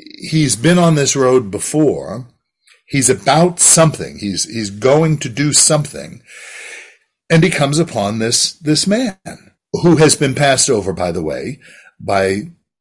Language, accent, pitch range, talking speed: English, American, 100-155 Hz, 145 wpm